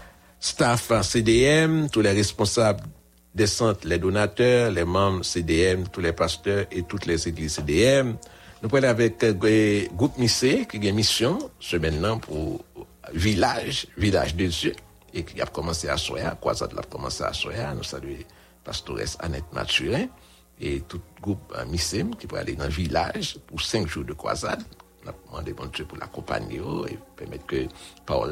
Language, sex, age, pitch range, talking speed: English, male, 60-79, 85-105 Hz, 175 wpm